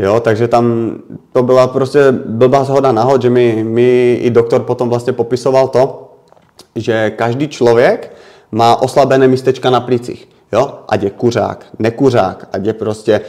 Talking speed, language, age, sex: 140 wpm, Czech, 30-49, male